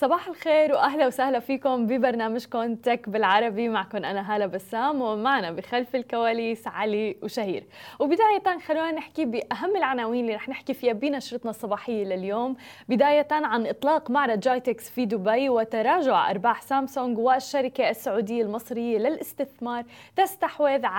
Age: 20-39